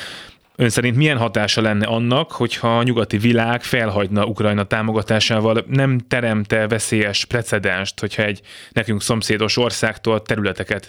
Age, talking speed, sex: 20-39, 125 wpm, male